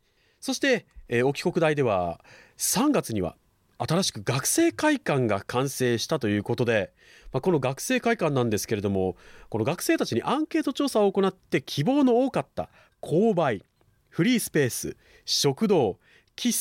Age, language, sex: 40-59, Japanese, male